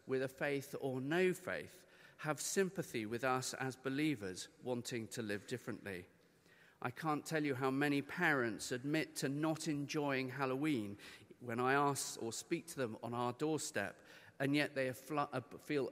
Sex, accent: male, British